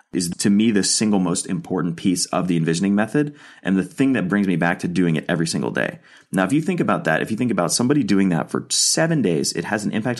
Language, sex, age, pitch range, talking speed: English, male, 30-49, 90-120 Hz, 265 wpm